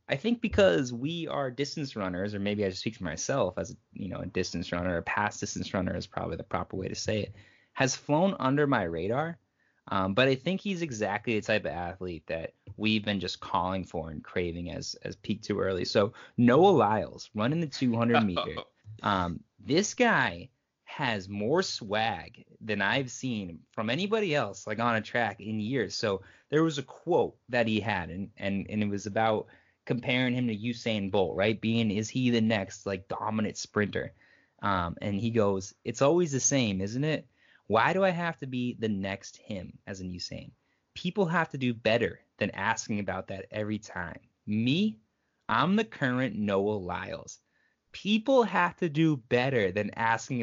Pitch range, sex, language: 100-140 Hz, male, English